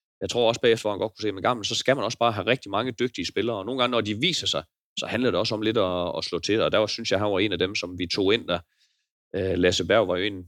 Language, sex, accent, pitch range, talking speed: Danish, male, native, 90-120 Hz, 325 wpm